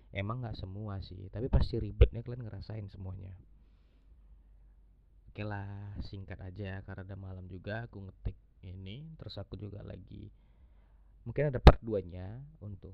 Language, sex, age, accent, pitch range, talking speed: Indonesian, male, 20-39, native, 95-115 Hz, 145 wpm